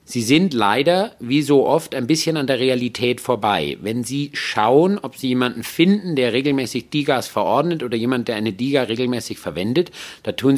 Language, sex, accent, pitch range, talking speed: German, male, German, 110-145 Hz, 180 wpm